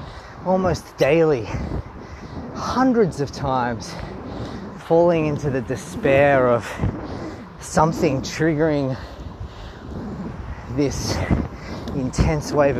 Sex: male